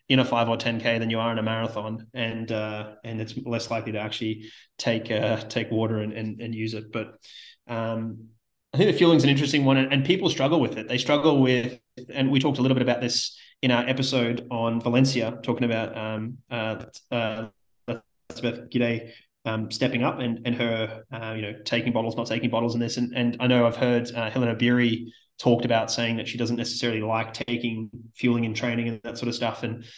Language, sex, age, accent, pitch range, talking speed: English, male, 20-39, Australian, 115-125 Hz, 220 wpm